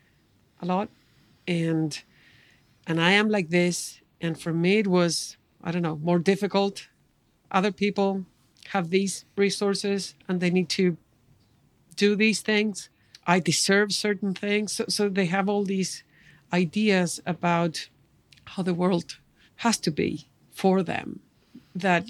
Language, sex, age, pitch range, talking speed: English, female, 50-69, 160-195 Hz, 140 wpm